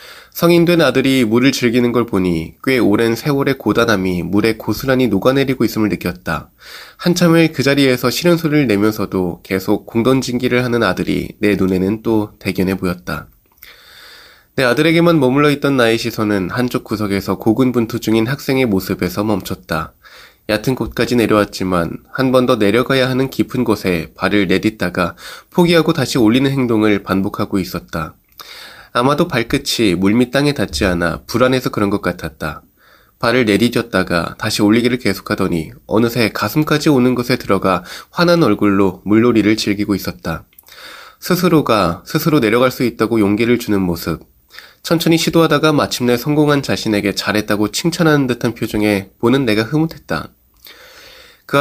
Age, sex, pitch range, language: 20-39, male, 100-135 Hz, Korean